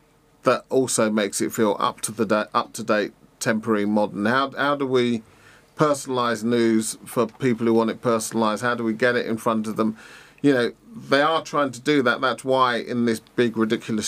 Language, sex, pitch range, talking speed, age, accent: English, male, 110-125 Hz, 185 wpm, 40-59, British